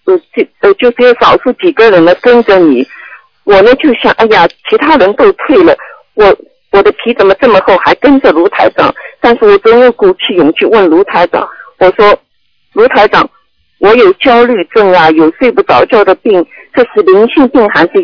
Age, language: 50-69, Chinese